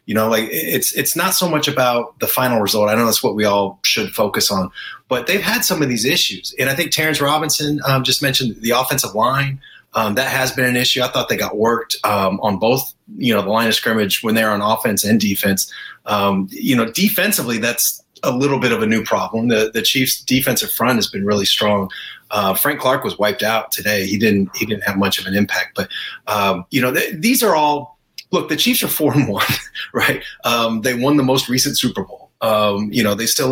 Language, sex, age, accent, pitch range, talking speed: English, male, 30-49, American, 105-145 Hz, 230 wpm